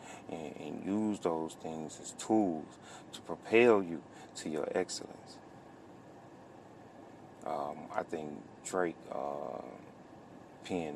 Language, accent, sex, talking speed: English, American, male, 105 wpm